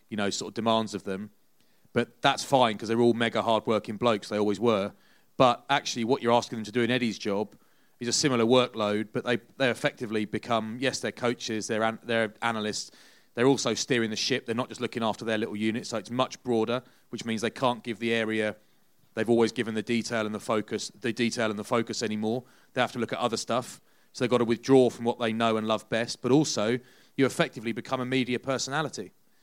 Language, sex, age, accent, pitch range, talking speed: English, male, 30-49, British, 115-130 Hz, 225 wpm